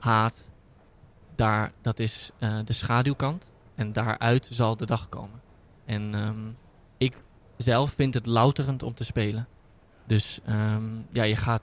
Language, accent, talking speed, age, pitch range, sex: Dutch, Dutch, 145 wpm, 20-39, 110-125 Hz, male